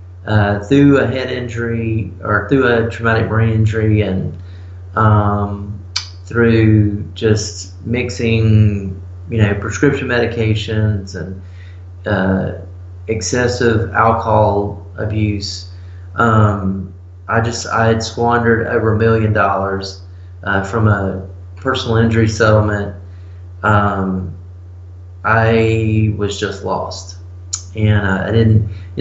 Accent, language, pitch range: American, English, 95-115 Hz